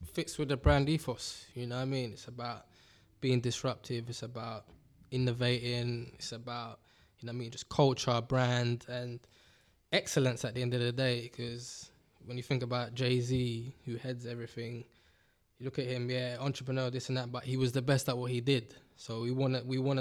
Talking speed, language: 200 wpm, English